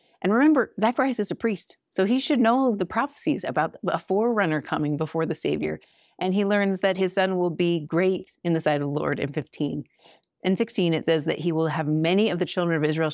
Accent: American